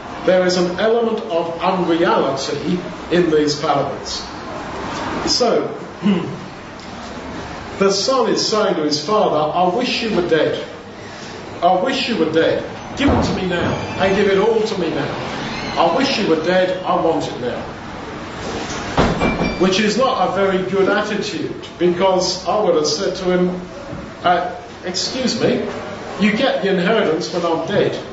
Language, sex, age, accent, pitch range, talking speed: English, male, 50-69, British, 165-205 Hz, 155 wpm